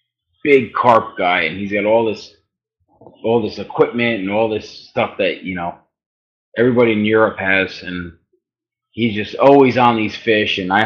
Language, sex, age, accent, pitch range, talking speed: English, male, 20-39, American, 95-120 Hz, 170 wpm